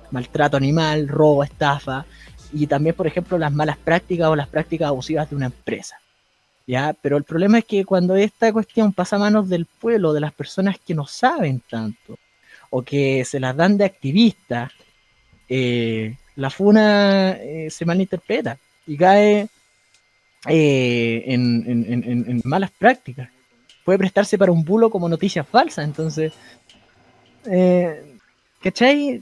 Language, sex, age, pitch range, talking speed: Spanish, male, 20-39, 135-200 Hz, 150 wpm